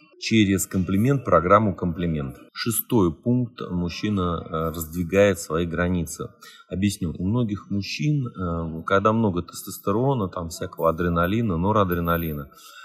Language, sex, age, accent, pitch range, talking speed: Russian, male, 30-49, native, 85-105 Hz, 105 wpm